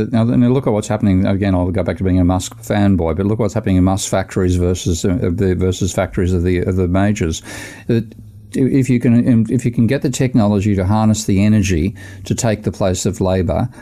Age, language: 50-69, English